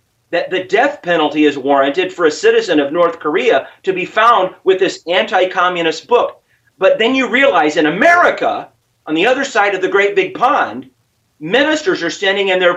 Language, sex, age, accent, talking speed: English, male, 40-59, American, 185 wpm